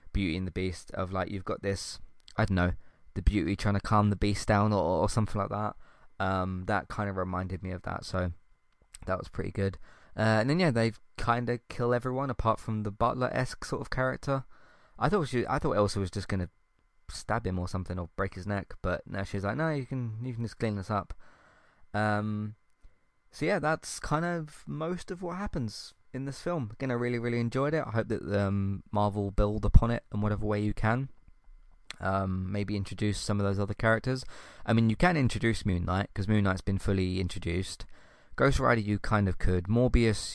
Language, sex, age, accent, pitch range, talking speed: English, male, 20-39, British, 95-115 Hz, 215 wpm